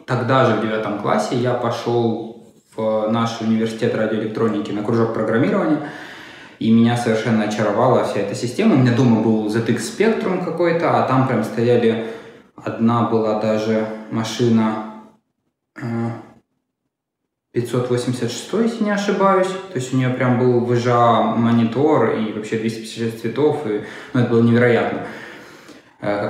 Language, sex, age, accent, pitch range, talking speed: Russian, male, 20-39, native, 110-130 Hz, 130 wpm